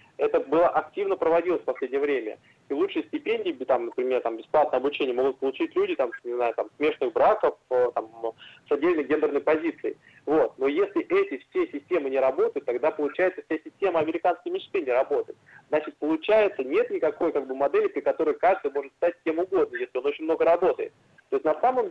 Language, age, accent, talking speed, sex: Russian, 20-39, native, 185 wpm, male